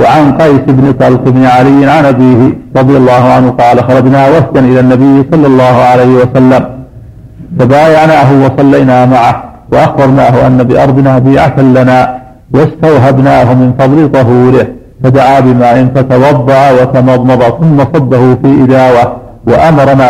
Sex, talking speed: male, 120 wpm